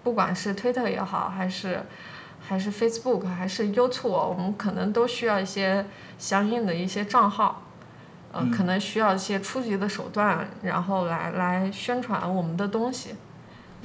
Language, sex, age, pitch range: Chinese, female, 20-39, 185-230 Hz